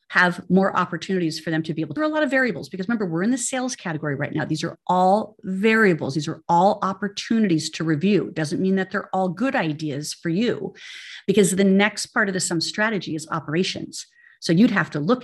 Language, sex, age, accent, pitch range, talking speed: English, female, 40-59, American, 155-195 Hz, 225 wpm